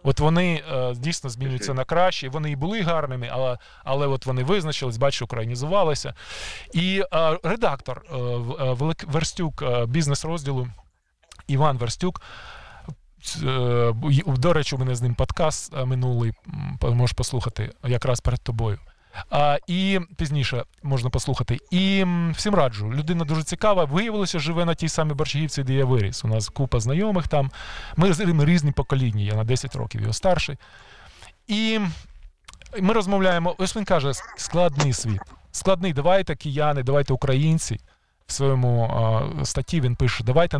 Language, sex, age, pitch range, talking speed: Ukrainian, male, 20-39, 125-165 Hz, 145 wpm